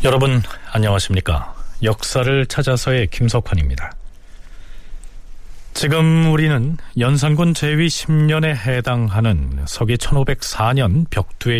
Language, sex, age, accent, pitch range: Korean, male, 40-59, native, 95-155 Hz